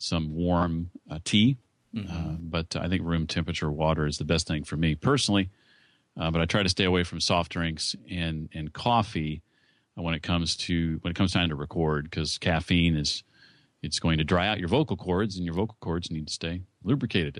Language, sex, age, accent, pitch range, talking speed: English, male, 40-59, American, 80-100 Hz, 205 wpm